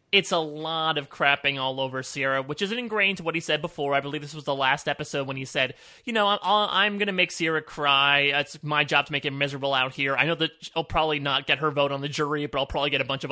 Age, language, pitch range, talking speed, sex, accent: 30-49, English, 145-185 Hz, 290 wpm, male, American